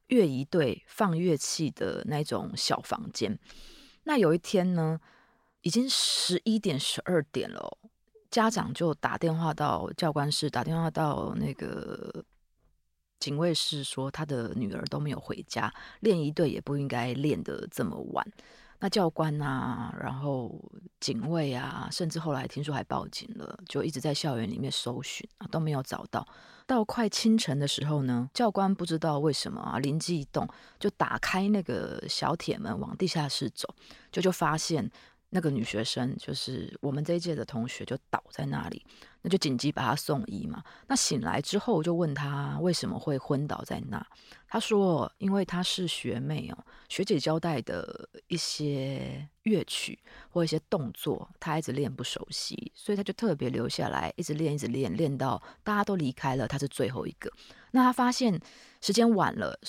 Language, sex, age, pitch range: Chinese, female, 20-39, 140-200 Hz